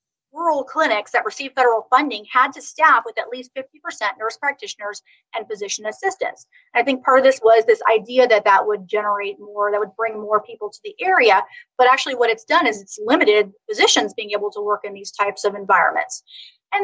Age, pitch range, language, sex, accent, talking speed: 30-49, 215-340 Hz, English, female, American, 205 wpm